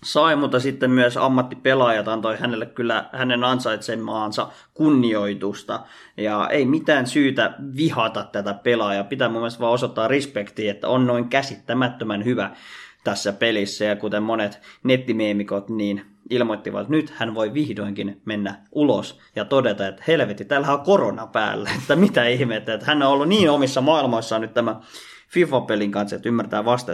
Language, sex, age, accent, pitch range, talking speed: Finnish, male, 20-39, native, 115-145 Hz, 150 wpm